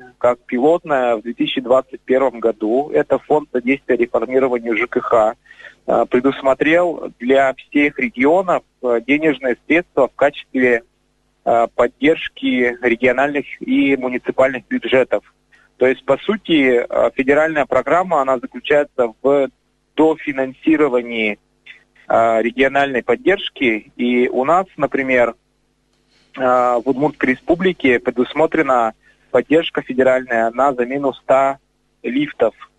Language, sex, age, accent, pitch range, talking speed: Russian, male, 30-49, native, 120-150 Hz, 90 wpm